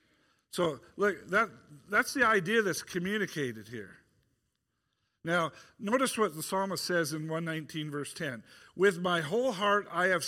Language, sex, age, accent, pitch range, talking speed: English, male, 50-69, American, 155-195 Hz, 140 wpm